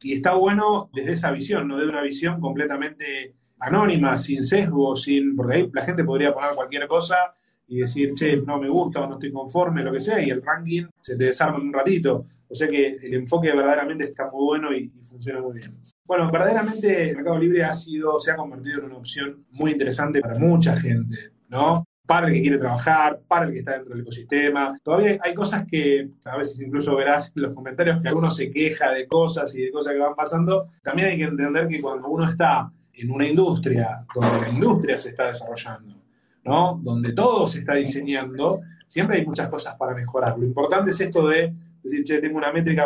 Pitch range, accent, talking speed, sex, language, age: 135-170 Hz, Argentinian, 215 wpm, male, Spanish, 30-49